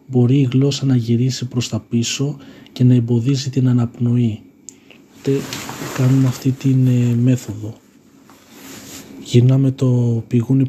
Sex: male